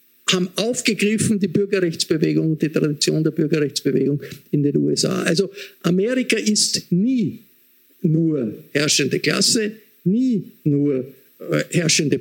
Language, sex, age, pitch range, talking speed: German, male, 50-69, 165-205 Hz, 110 wpm